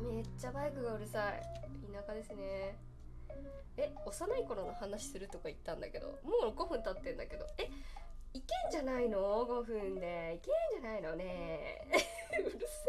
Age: 20-39